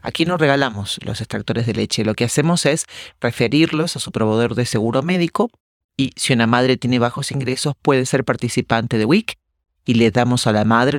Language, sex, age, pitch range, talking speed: English, male, 40-59, 115-140 Hz, 195 wpm